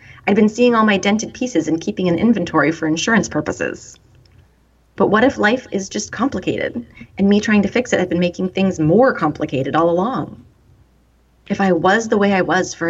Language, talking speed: English, 200 wpm